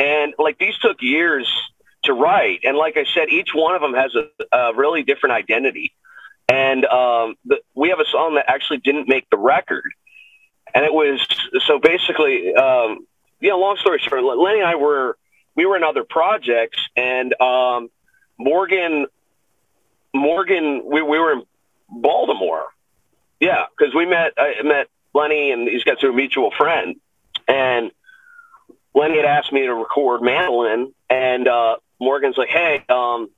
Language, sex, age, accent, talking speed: English, male, 40-59, American, 160 wpm